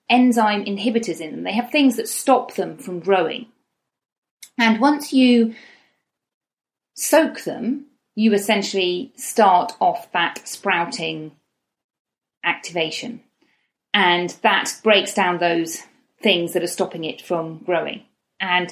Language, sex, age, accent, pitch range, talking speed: English, female, 40-59, British, 180-245 Hz, 120 wpm